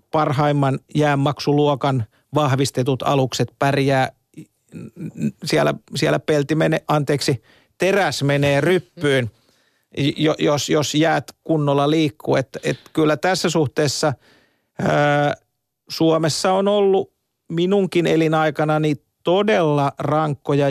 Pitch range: 135-160 Hz